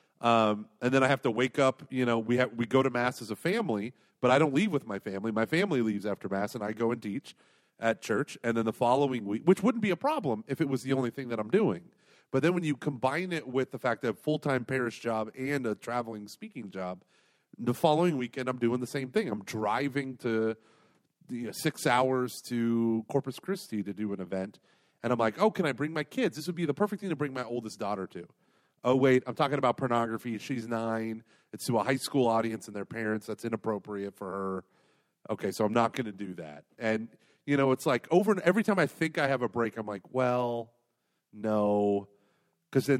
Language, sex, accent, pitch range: English, male, American, 110-140 Hz